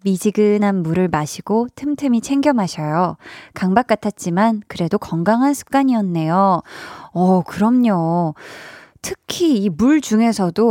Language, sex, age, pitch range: Korean, female, 20-39, 185-260 Hz